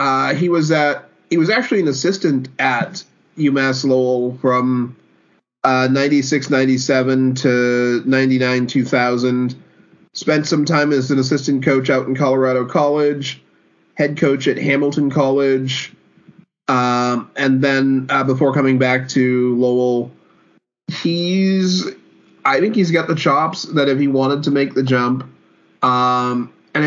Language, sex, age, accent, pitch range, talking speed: English, male, 30-49, American, 125-155 Hz, 135 wpm